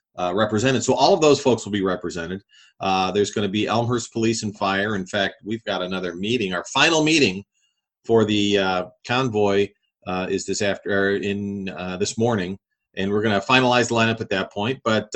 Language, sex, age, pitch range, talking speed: English, male, 40-59, 95-120 Hz, 200 wpm